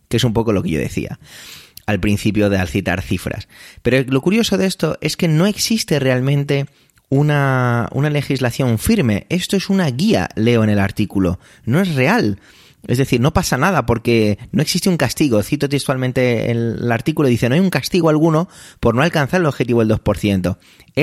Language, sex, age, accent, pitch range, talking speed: Spanish, male, 30-49, Spanish, 100-145 Hz, 190 wpm